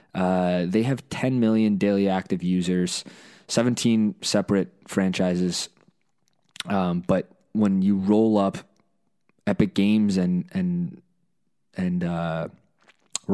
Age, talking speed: 20-39, 105 wpm